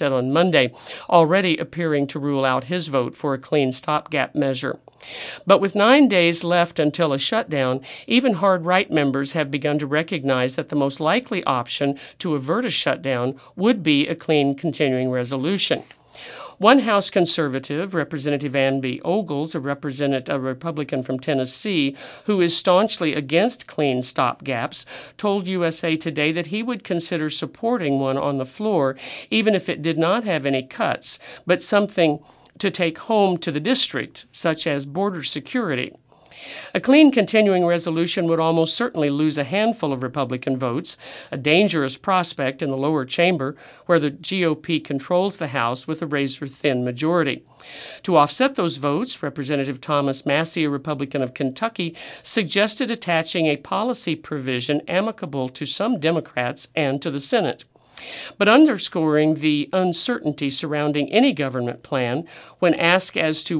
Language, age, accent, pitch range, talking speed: English, 50-69, American, 140-180 Hz, 150 wpm